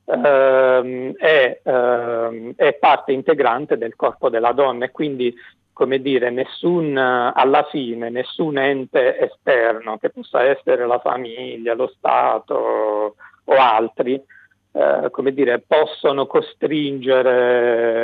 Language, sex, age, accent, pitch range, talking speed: Italian, male, 50-69, native, 120-140 Hz, 105 wpm